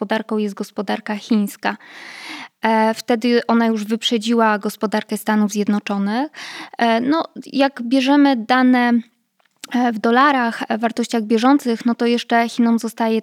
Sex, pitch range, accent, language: female, 215-250 Hz, native, Polish